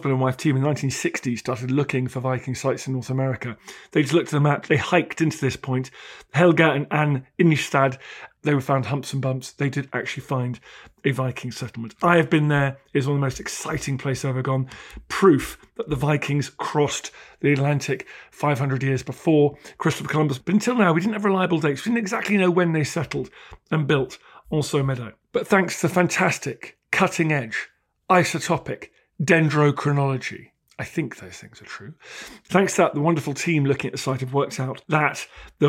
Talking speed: 195 wpm